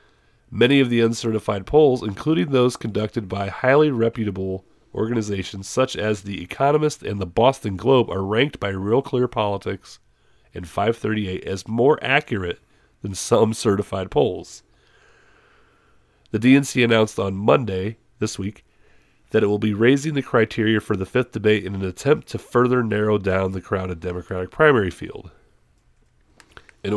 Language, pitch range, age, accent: English, 95-120 Hz, 40-59, American